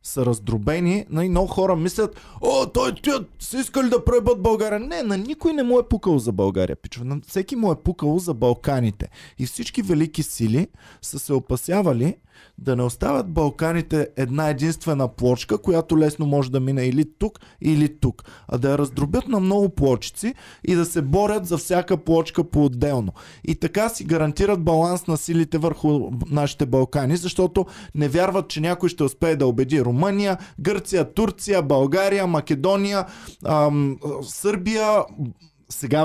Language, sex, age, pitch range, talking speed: Bulgarian, male, 20-39, 135-185 Hz, 155 wpm